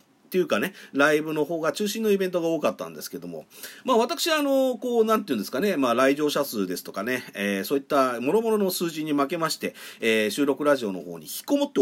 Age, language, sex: 40-59, Japanese, male